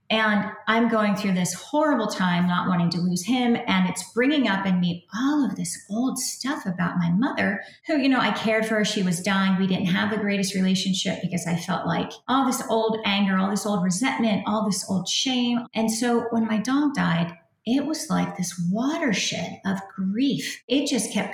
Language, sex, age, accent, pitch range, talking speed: English, female, 30-49, American, 180-220 Hz, 210 wpm